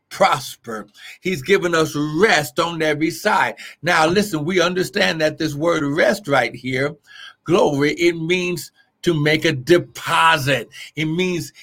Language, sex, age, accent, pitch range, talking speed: English, male, 50-69, American, 170-210 Hz, 140 wpm